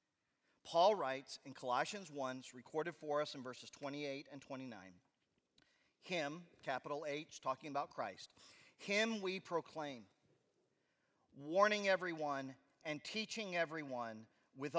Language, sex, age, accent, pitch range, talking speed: English, male, 40-59, American, 140-205 Hz, 115 wpm